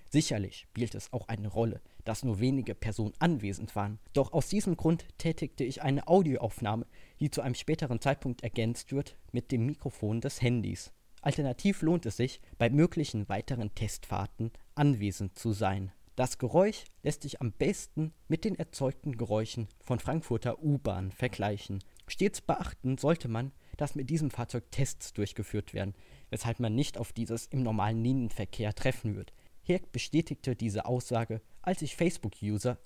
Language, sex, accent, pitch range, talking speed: German, male, German, 110-145 Hz, 155 wpm